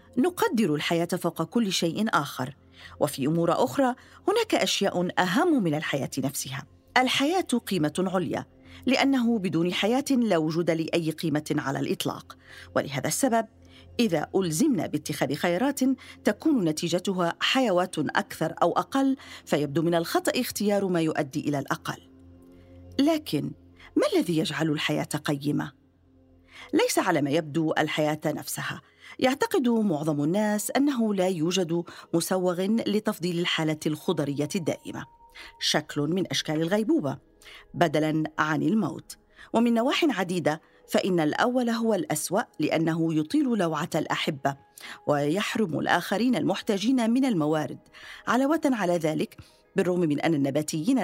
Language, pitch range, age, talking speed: Arabic, 150-230 Hz, 40-59, 120 wpm